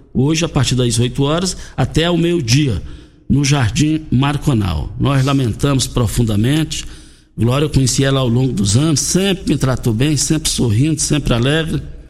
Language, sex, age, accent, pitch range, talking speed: Portuguese, male, 60-79, Brazilian, 115-155 Hz, 160 wpm